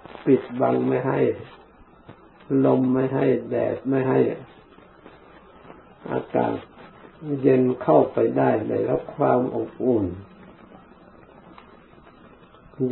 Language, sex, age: Thai, male, 60-79